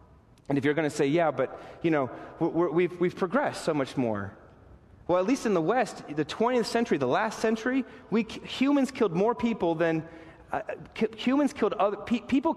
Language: English